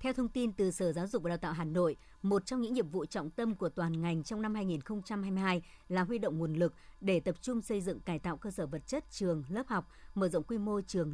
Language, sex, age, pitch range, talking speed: Vietnamese, male, 60-79, 175-215 Hz, 265 wpm